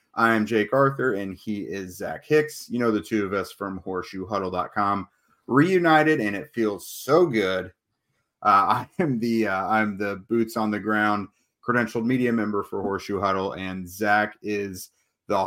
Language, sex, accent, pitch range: English, male, American, 100-120 Hz